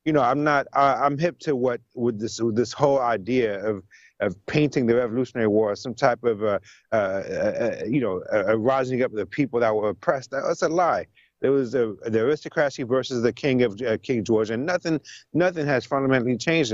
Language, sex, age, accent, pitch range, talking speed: English, male, 30-49, American, 115-145 Hz, 215 wpm